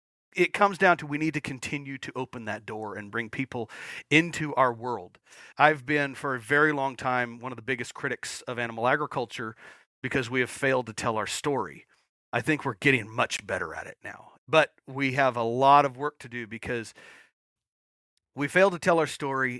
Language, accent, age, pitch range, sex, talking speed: English, American, 40-59, 115-155 Hz, male, 200 wpm